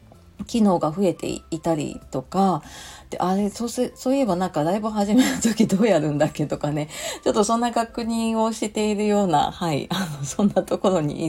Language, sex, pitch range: Japanese, female, 155-210 Hz